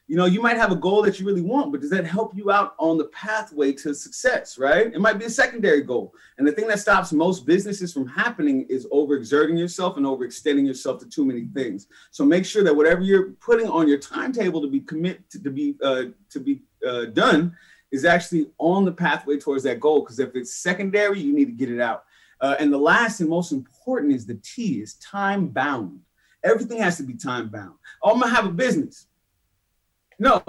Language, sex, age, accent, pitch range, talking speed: English, male, 30-49, American, 145-210 Hz, 225 wpm